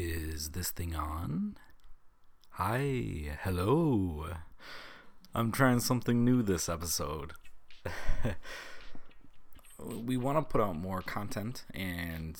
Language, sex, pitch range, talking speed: English, male, 85-105 Hz, 95 wpm